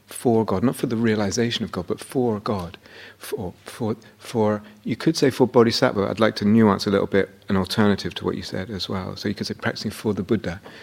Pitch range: 95-110 Hz